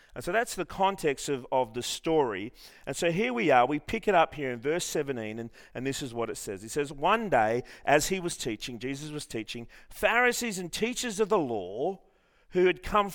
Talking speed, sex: 225 wpm, male